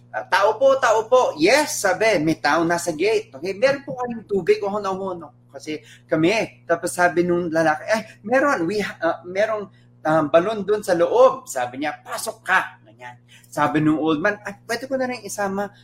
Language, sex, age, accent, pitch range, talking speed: Filipino, male, 30-49, native, 135-210 Hz, 185 wpm